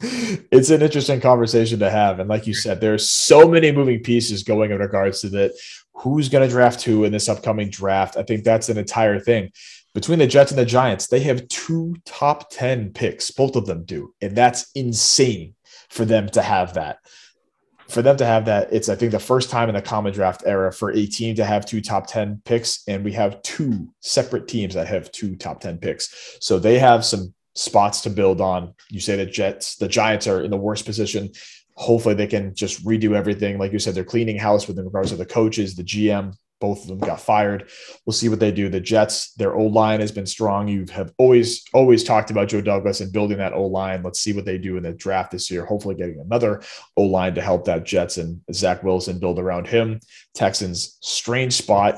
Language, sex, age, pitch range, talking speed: English, male, 20-39, 95-115 Hz, 225 wpm